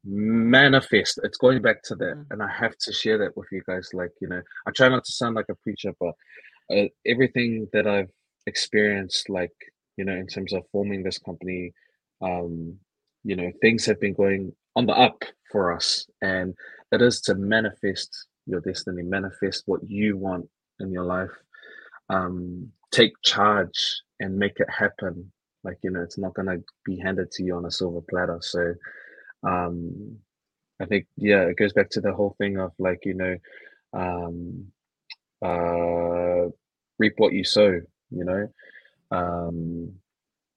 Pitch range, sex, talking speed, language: 90-105 Hz, male, 170 wpm, English